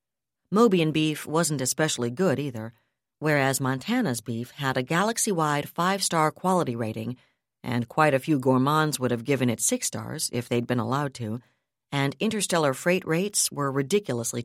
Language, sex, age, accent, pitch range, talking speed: English, female, 50-69, American, 125-170 Hz, 155 wpm